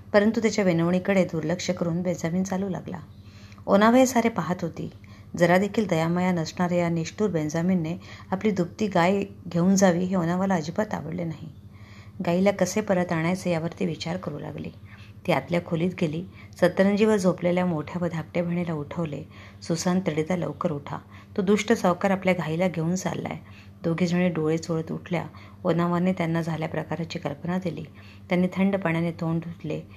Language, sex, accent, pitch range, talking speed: Marathi, female, native, 155-180 Hz, 130 wpm